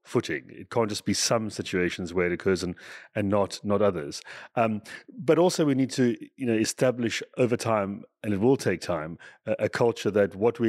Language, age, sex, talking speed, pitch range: English, 30-49, male, 210 wpm, 100-125 Hz